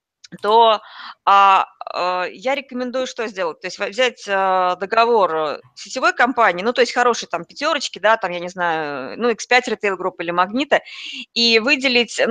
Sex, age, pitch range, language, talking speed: female, 20-39, 205-250 Hz, Russian, 160 wpm